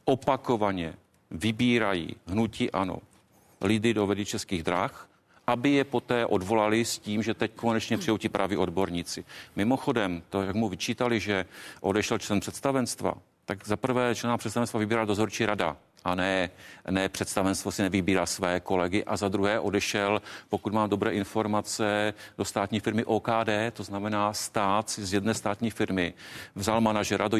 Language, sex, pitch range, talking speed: Czech, male, 95-110 Hz, 150 wpm